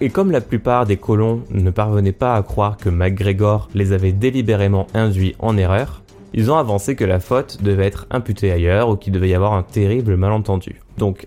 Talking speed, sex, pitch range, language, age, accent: 200 wpm, male, 95-115 Hz, French, 20-39, French